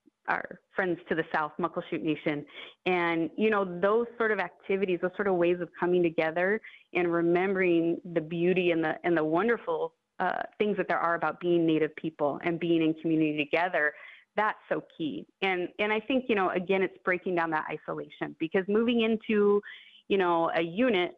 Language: English